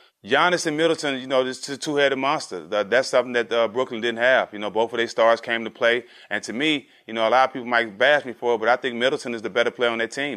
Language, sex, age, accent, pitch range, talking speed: English, male, 30-49, American, 120-140 Hz, 295 wpm